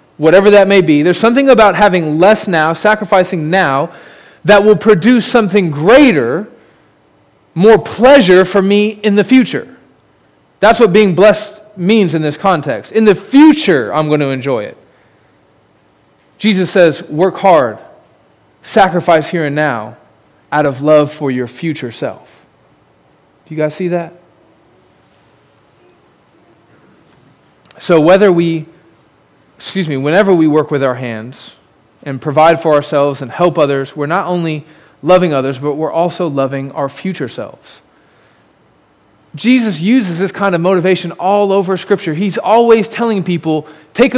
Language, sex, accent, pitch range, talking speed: English, male, American, 155-215 Hz, 140 wpm